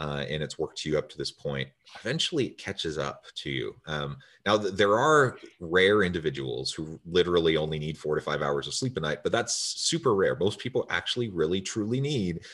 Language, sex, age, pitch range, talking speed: English, male, 30-49, 75-95 Hz, 210 wpm